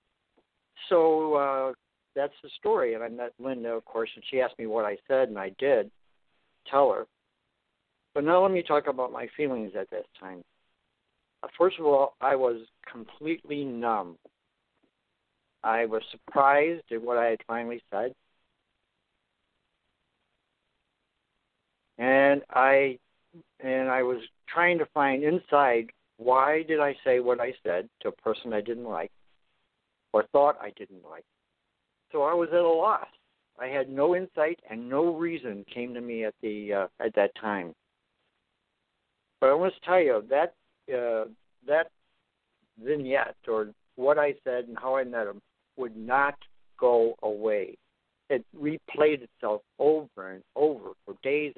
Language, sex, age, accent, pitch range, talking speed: English, male, 60-79, American, 115-150 Hz, 150 wpm